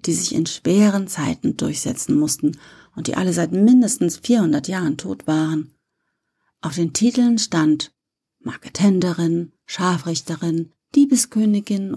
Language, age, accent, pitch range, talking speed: German, 40-59, German, 155-210 Hz, 115 wpm